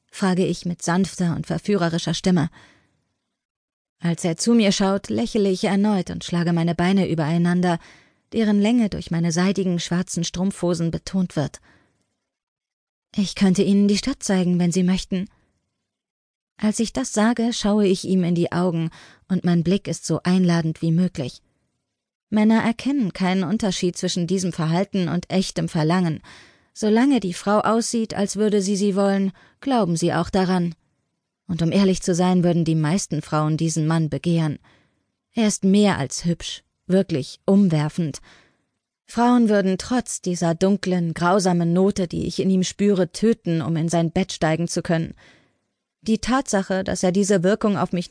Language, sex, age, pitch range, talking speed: German, female, 20-39, 170-200 Hz, 155 wpm